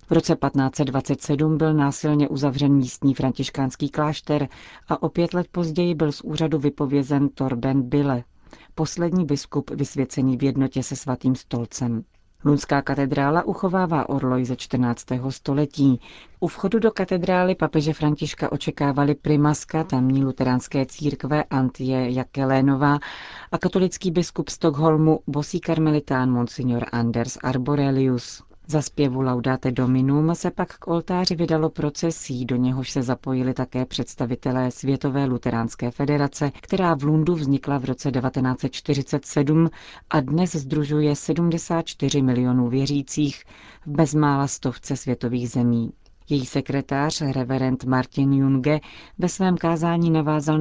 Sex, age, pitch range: female, 40-59, 130-155 Hz